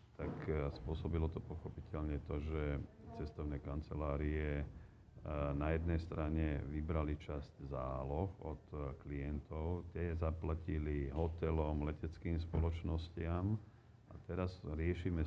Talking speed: 95 wpm